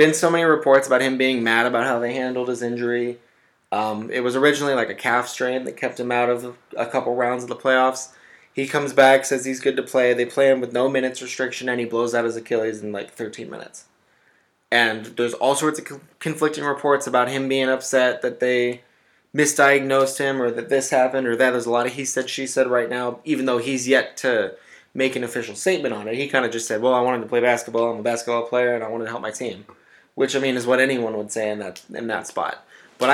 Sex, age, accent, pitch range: male, 20-39, American, 120-135 Hz